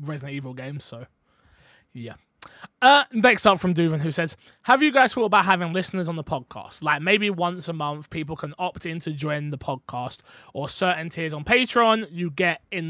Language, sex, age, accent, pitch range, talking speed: English, male, 20-39, British, 150-190 Hz, 200 wpm